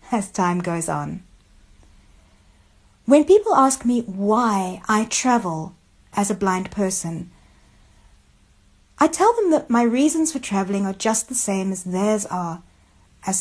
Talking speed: 140 wpm